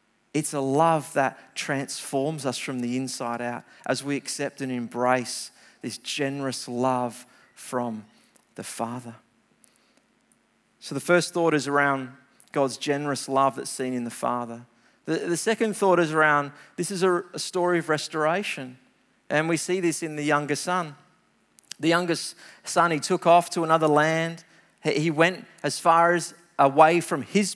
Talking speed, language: 160 wpm, English